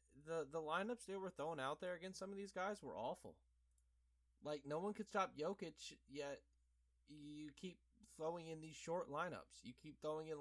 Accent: American